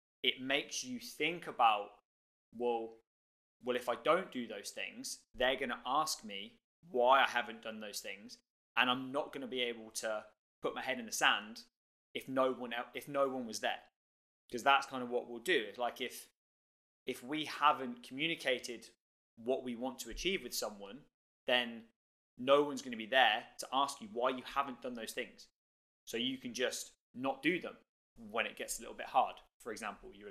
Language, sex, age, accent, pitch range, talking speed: English, male, 20-39, British, 115-145 Hz, 200 wpm